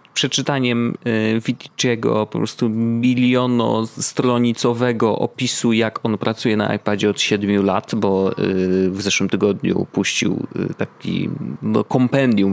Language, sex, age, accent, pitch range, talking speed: Polish, male, 30-49, native, 100-140 Hz, 100 wpm